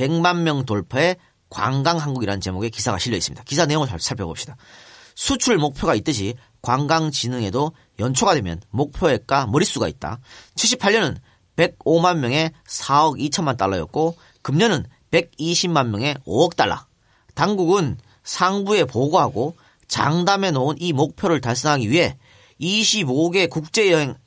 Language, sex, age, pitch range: Korean, male, 40-59, 125-180 Hz